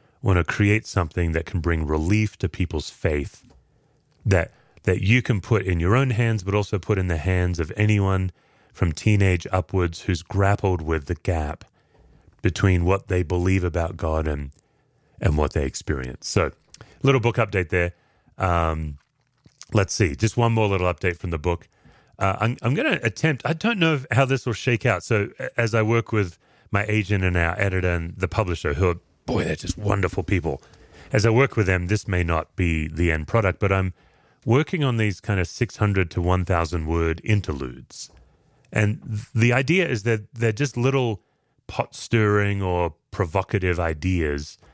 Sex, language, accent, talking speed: male, English, American, 180 wpm